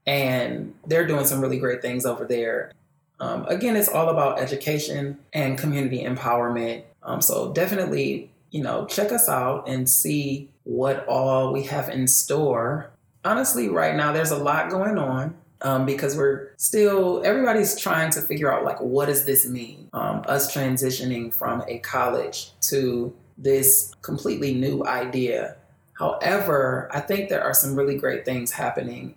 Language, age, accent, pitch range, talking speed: English, 20-39, American, 130-155 Hz, 160 wpm